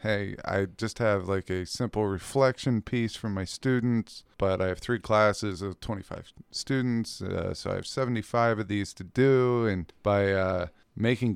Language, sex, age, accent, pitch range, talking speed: English, male, 20-39, American, 95-120 Hz, 175 wpm